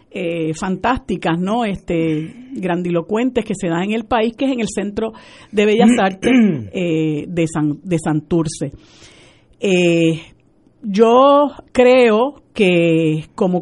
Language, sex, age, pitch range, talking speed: Spanish, female, 50-69, 170-230 Hz, 130 wpm